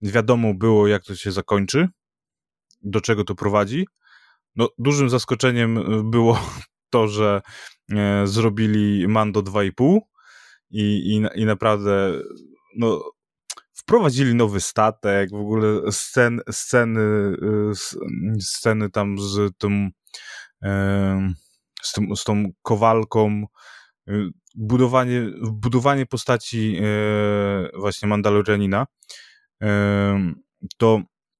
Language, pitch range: Polish, 105-125 Hz